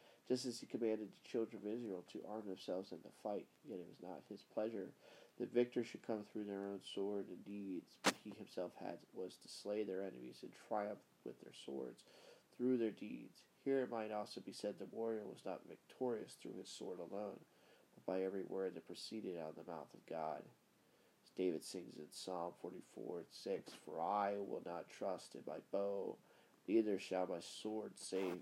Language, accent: English, American